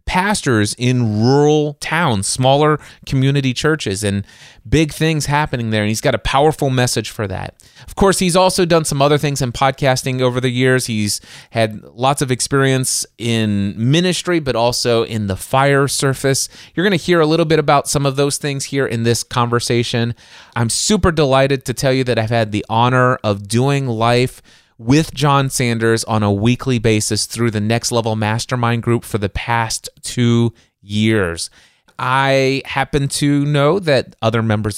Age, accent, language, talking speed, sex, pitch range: 30-49, American, English, 175 wpm, male, 110-145 Hz